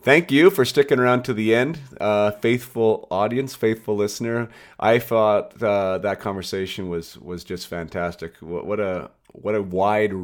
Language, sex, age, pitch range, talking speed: English, male, 30-49, 90-105 Hz, 165 wpm